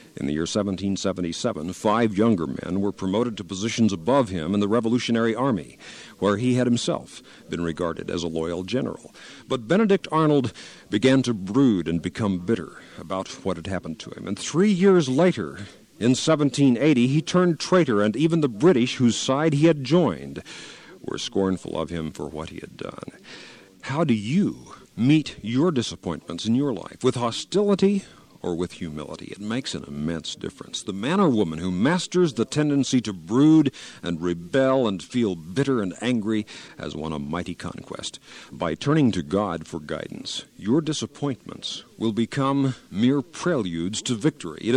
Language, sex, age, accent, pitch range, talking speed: English, male, 50-69, American, 90-135 Hz, 170 wpm